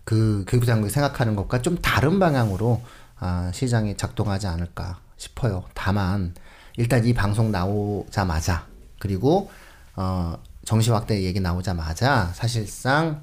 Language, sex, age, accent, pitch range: Korean, male, 40-59, native, 95-140 Hz